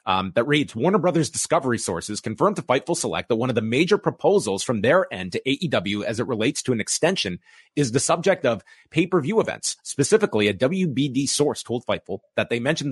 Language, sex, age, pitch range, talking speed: English, male, 30-49, 110-155 Hz, 210 wpm